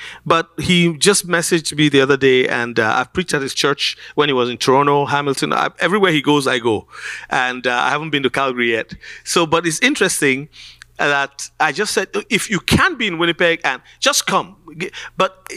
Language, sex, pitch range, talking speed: English, male, 135-205 Hz, 205 wpm